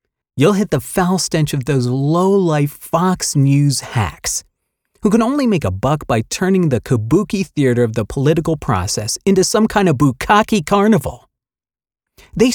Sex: male